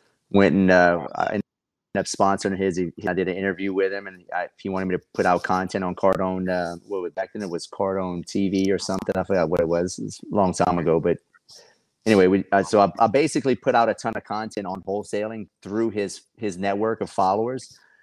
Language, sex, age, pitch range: English, male, 30-49, 90-100 Hz